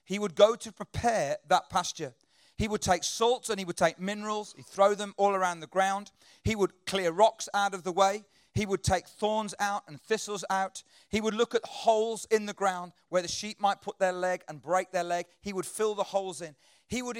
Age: 40-59